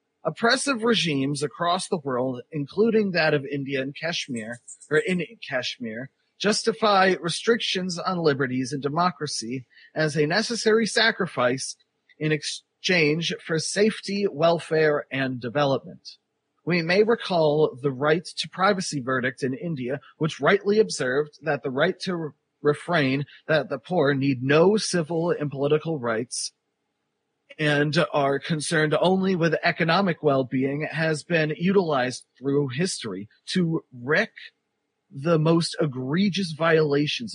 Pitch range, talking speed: 140-190 Hz, 120 wpm